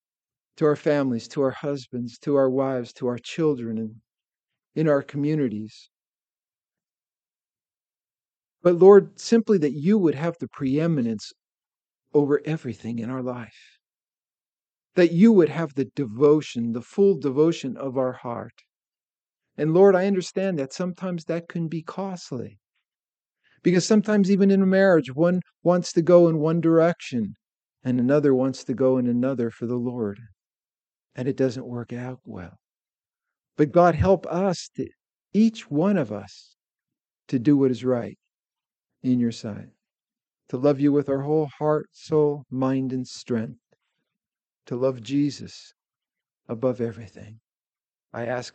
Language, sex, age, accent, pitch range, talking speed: English, male, 50-69, American, 125-165 Hz, 140 wpm